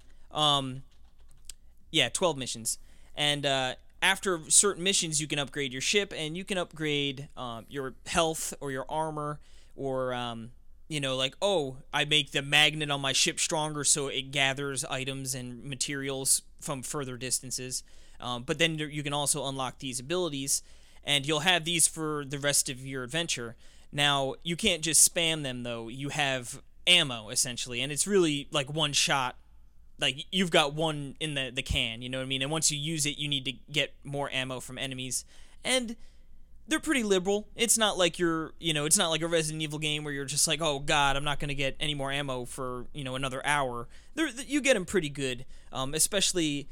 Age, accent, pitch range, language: 20-39, American, 130-155 Hz, English